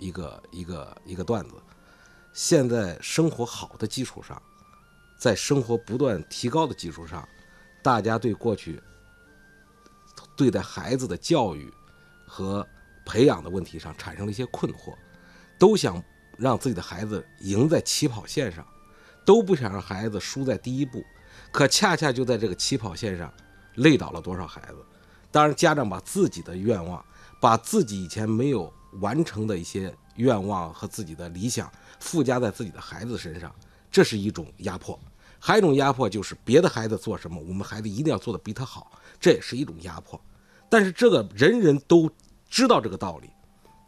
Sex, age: male, 50-69